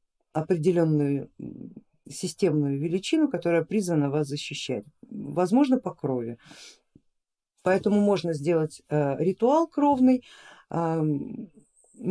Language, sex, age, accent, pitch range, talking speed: Russian, female, 50-69, native, 150-205 Hz, 85 wpm